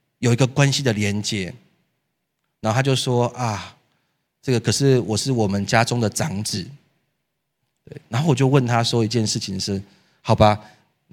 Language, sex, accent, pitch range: Chinese, male, native, 115-145 Hz